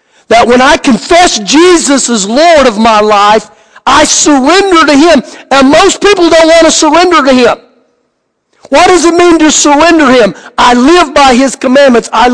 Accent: American